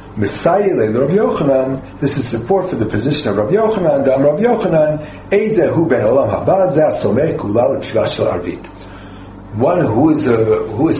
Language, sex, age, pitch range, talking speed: English, male, 40-59, 105-150 Hz, 160 wpm